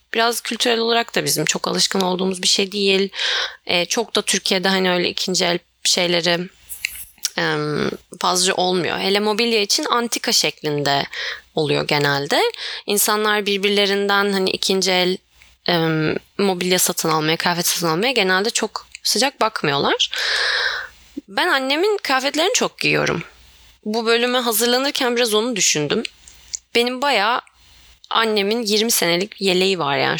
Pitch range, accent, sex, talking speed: 180-240 Hz, native, female, 125 wpm